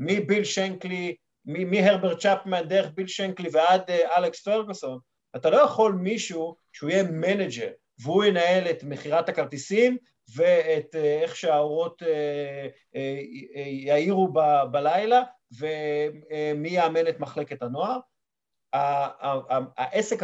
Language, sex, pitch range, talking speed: Hebrew, male, 145-200 Hz, 120 wpm